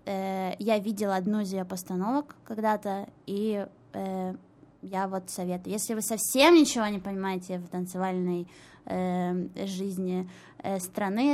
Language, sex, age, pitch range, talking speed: Russian, female, 20-39, 190-220 Hz, 130 wpm